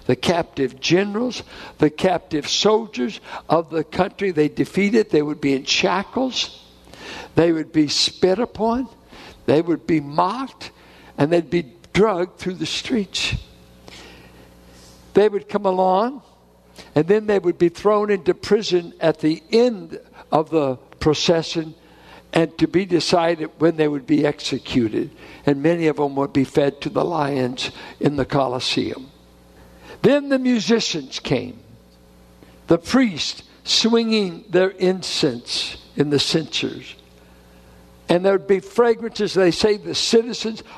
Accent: American